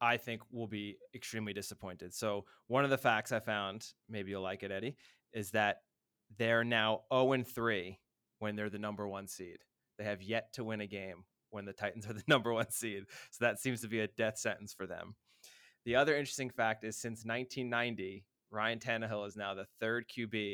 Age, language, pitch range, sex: 20-39, English, 105-125 Hz, male